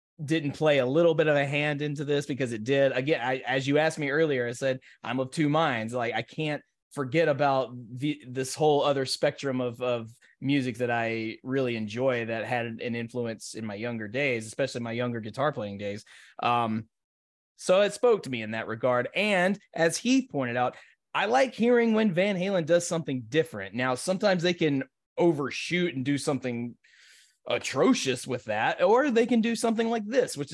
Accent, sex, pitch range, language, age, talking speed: American, male, 125-165 Hz, English, 20-39, 195 wpm